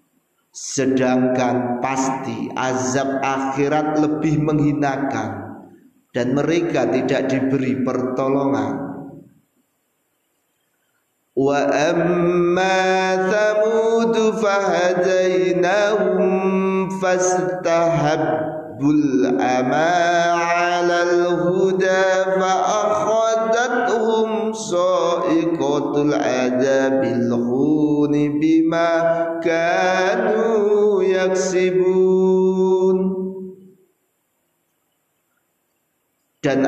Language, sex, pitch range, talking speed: Indonesian, male, 140-185 Hz, 40 wpm